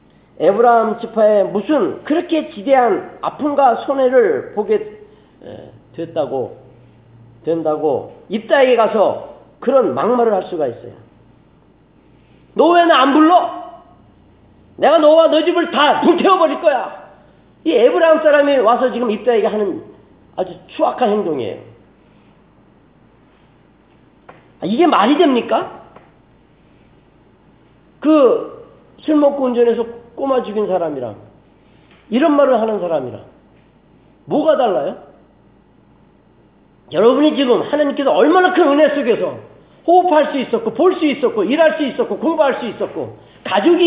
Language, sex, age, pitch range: Korean, male, 40-59, 235-350 Hz